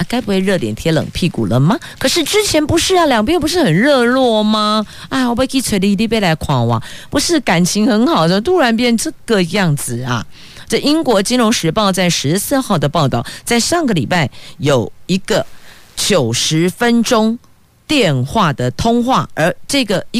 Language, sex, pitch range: Chinese, female, 140-230 Hz